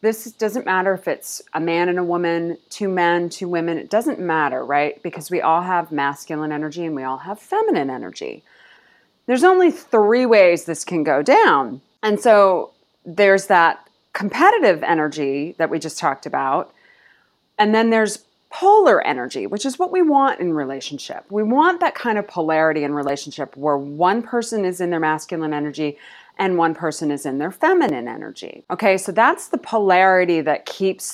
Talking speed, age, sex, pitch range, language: 175 wpm, 30-49, female, 155-220 Hz, English